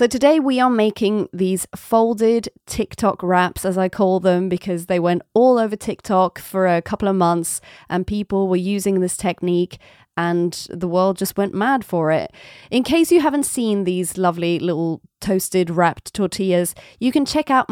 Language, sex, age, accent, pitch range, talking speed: English, female, 20-39, British, 175-225 Hz, 180 wpm